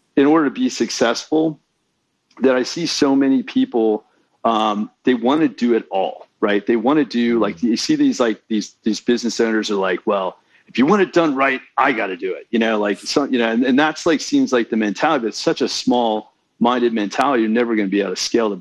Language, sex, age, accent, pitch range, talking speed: English, male, 40-59, American, 110-145 Hz, 245 wpm